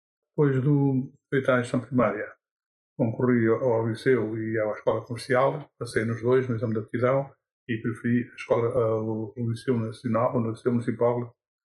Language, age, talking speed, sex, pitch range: Portuguese, 50-69, 180 wpm, male, 115-130 Hz